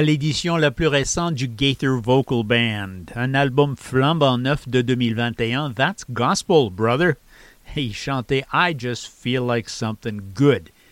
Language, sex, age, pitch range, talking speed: English, male, 50-69, 125-170 Hz, 135 wpm